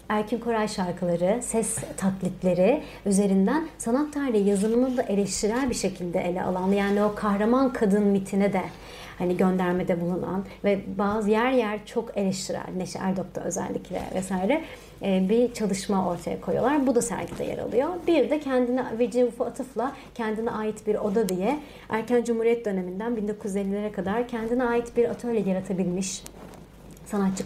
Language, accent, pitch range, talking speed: Turkish, native, 185-230 Hz, 140 wpm